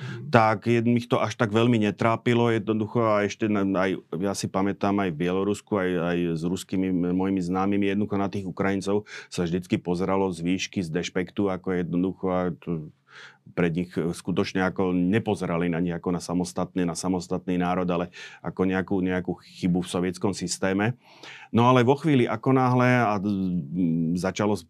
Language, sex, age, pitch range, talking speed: Slovak, male, 30-49, 95-105 Hz, 155 wpm